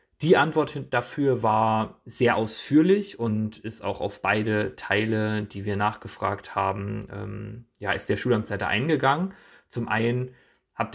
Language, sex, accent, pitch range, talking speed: German, male, German, 105-120 Hz, 135 wpm